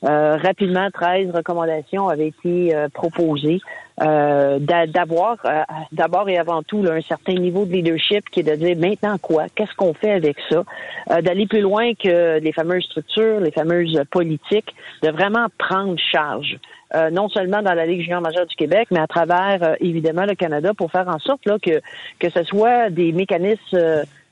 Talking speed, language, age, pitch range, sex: 190 wpm, French, 50-69, 165-200 Hz, female